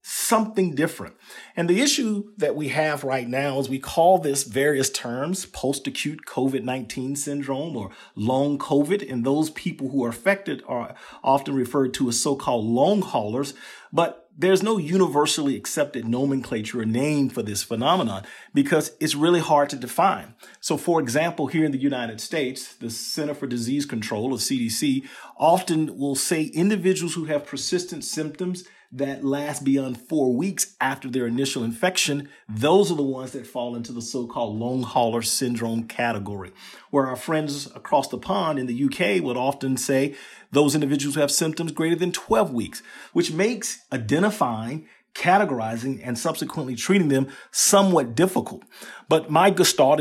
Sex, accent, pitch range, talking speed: male, American, 130-170 Hz, 155 wpm